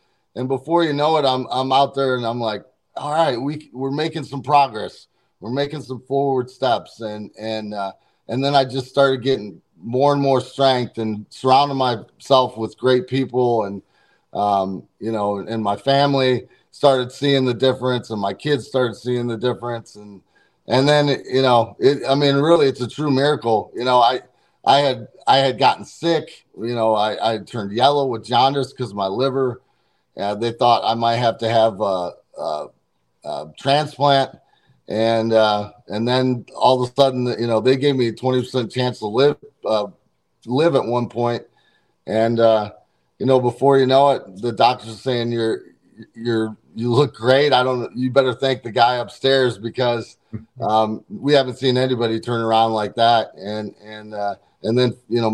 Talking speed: 190 wpm